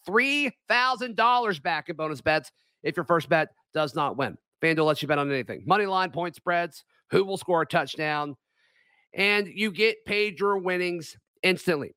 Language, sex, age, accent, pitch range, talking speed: English, male, 40-59, American, 170-210 Hz, 165 wpm